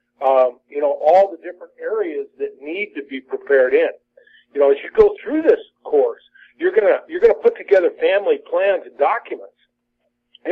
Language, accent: English, American